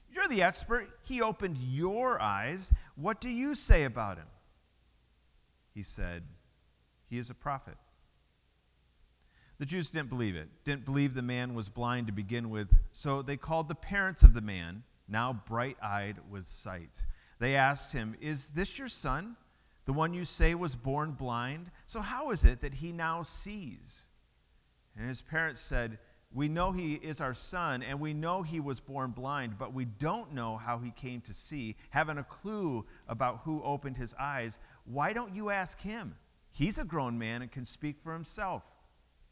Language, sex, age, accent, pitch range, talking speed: English, male, 40-59, American, 100-150 Hz, 175 wpm